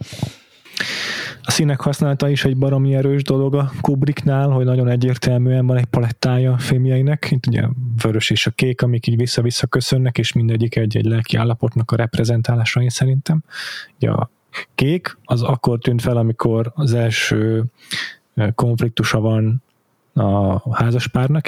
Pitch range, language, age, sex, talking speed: 115-135 Hz, Hungarian, 20-39, male, 140 wpm